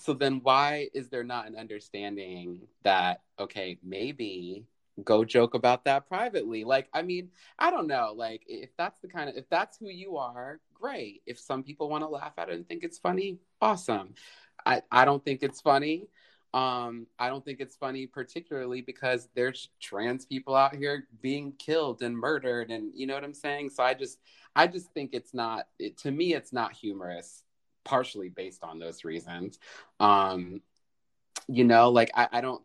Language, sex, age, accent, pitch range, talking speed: English, male, 30-49, American, 115-140 Hz, 185 wpm